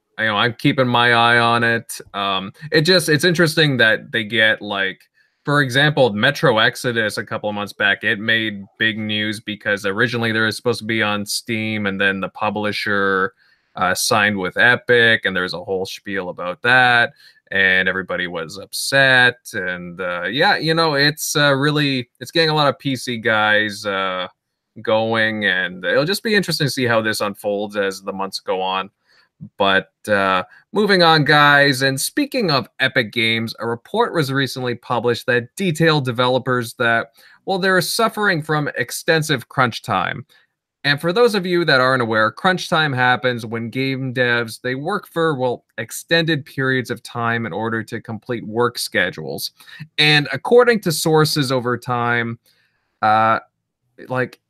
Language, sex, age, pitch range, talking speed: English, male, 20-39, 110-150 Hz, 165 wpm